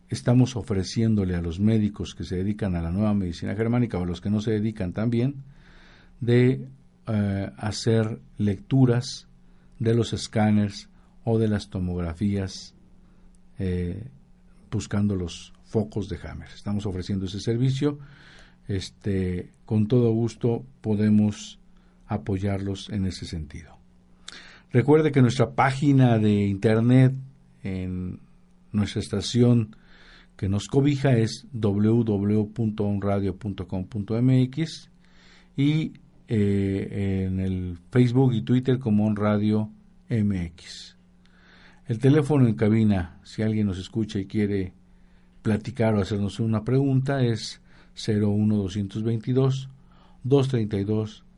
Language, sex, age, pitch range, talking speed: Spanish, male, 50-69, 95-120 Hz, 110 wpm